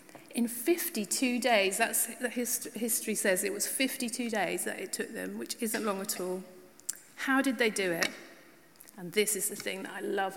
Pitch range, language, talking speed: 185-255 Hz, English, 185 wpm